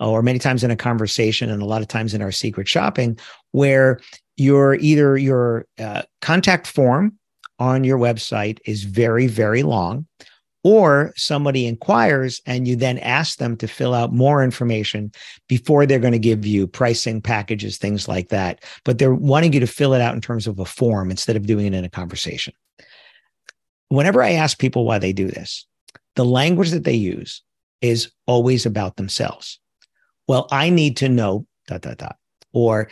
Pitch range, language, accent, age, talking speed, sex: 110-140 Hz, English, American, 50-69, 180 wpm, male